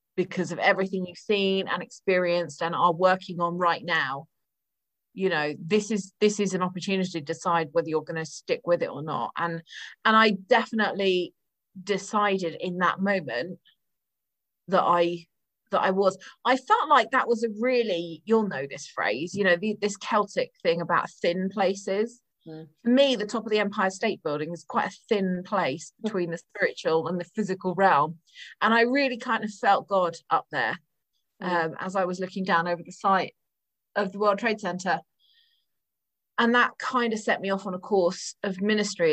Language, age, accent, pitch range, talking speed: English, 30-49, British, 175-215 Hz, 185 wpm